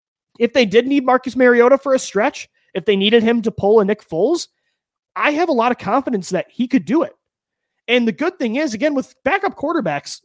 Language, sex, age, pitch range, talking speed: English, male, 30-49, 185-235 Hz, 220 wpm